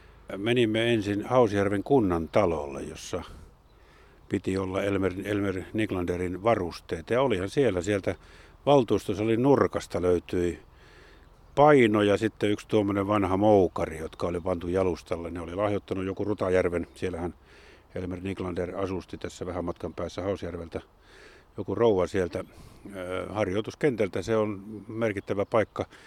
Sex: male